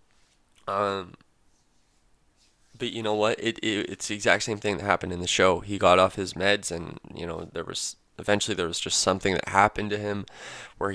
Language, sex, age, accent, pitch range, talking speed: English, male, 20-39, American, 95-110 Hz, 205 wpm